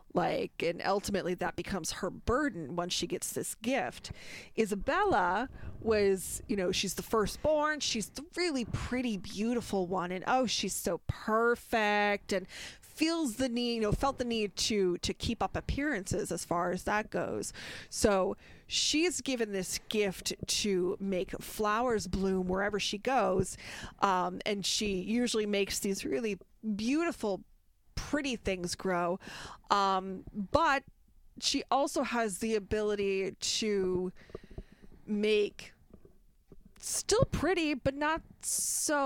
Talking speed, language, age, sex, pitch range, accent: 130 wpm, English, 20-39, female, 190-240 Hz, American